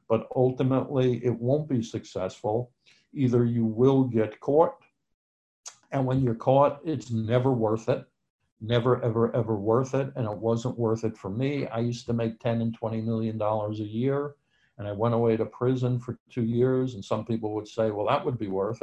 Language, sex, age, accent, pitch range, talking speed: English, male, 60-79, American, 110-125 Hz, 190 wpm